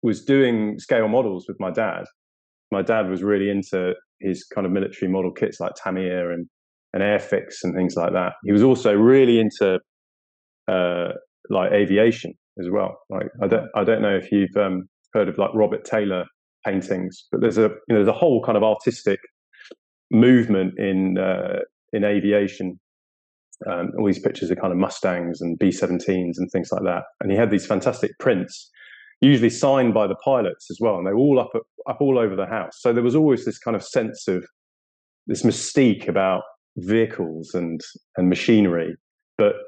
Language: English